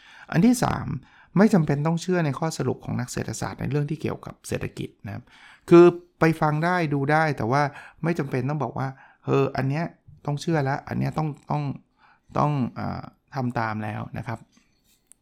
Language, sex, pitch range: Thai, male, 115-145 Hz